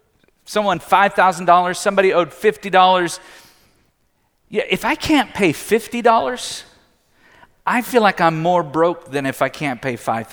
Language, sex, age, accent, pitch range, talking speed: English, male, 50-69, American, 185-260 Hz, 135 wpm